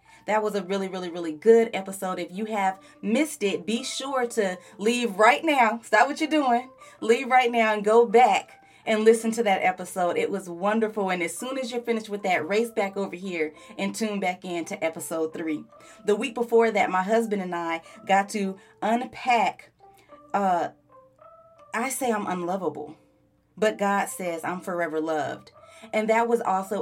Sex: female